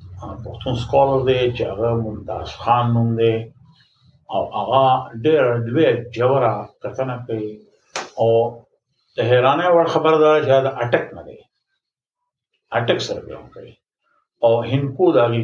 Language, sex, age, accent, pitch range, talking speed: English, male, 60-79, Indian, 115-150 Hz, 95 wpm